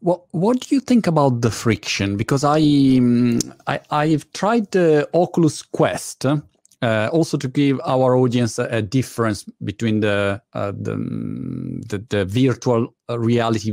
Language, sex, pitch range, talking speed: Italian, male, 105-140 Hz, 150 wpm